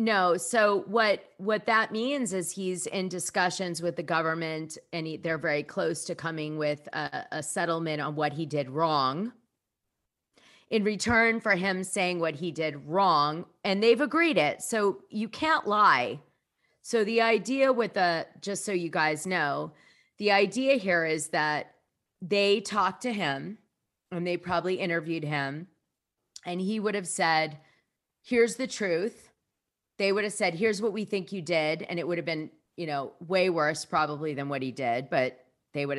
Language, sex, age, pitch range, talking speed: English, female, 40-59, 160-210 Hz, 175 wpm